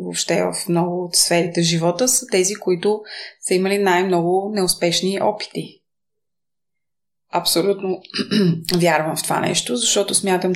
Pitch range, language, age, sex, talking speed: 170-195 Hz, Bulgarian, 20-39, female, 110 wpm